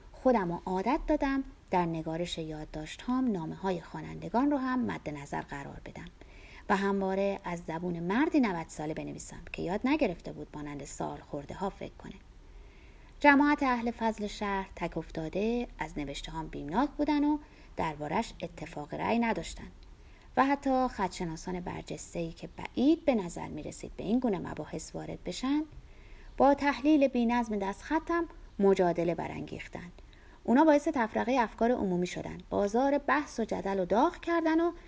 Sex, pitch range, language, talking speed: female, 160-255 Hz, Persian, 150 wpm